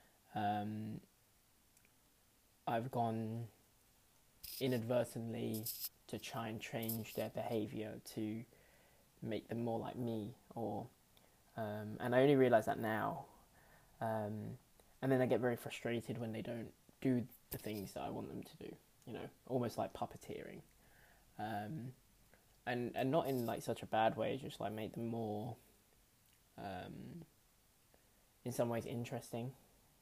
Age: 20-39